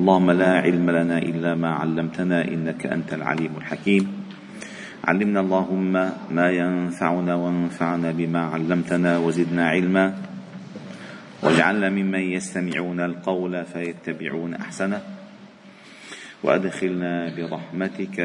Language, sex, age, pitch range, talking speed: Arabic, male, 40-59, 85-115 Hz, 90 wpm